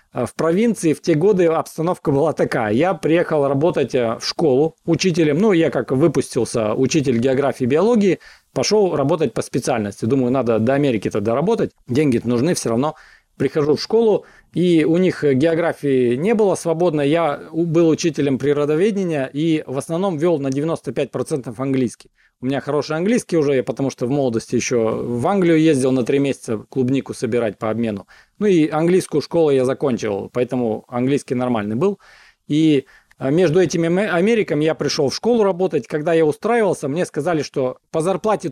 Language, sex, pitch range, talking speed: Russian, male, 135-170 Hz, 160 wpm